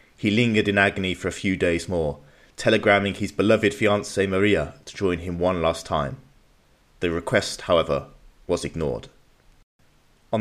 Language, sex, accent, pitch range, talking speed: English, male, British, 90-110 Hz, 150 wpm